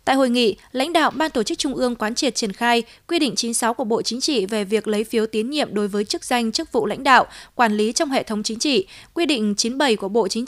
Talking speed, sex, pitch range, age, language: 275 wpm, female, 215-270 Hz, 20-39, Vietnamese